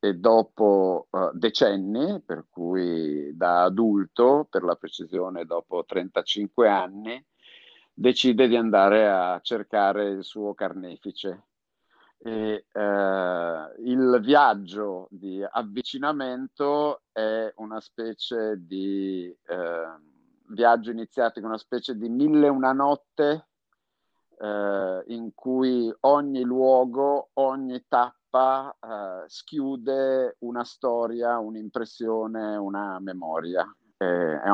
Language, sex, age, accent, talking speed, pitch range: Italian, male, 50-69, native, 100 wpm, 100-130 Hz